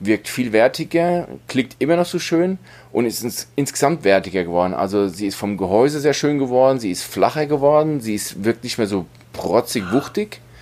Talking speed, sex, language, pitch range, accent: 185 wpm, male, German, 100-130 Hz, German